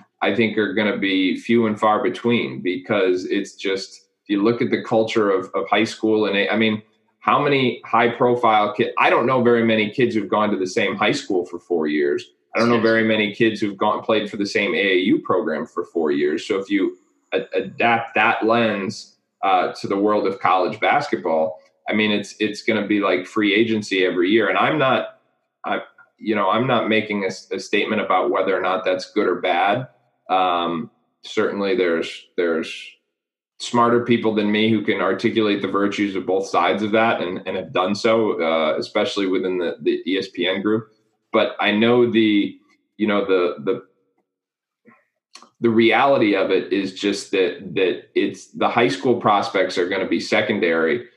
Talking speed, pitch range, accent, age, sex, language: 195 wpm, 95-115 Hz, American, 20-39, male, English